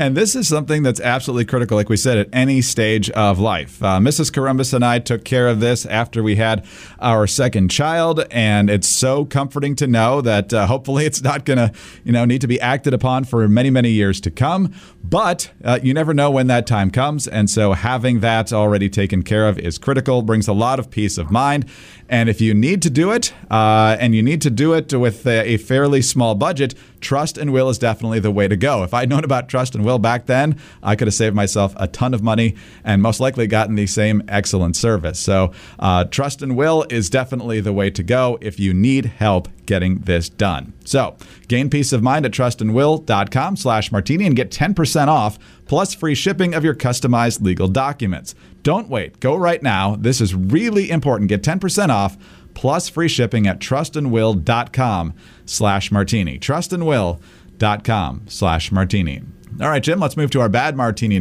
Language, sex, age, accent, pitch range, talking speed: English, male, 40-59, American, 105-135 Hz, 200 wpm